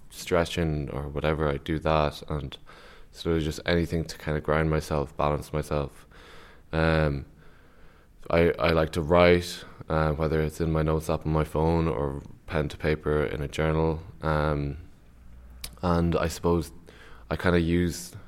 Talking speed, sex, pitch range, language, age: 160 wpm, male, 75-85 Hz, English, 20-39